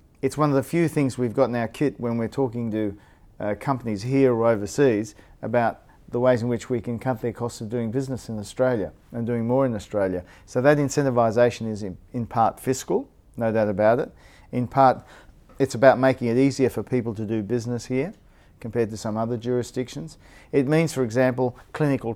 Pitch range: 110-130 Hz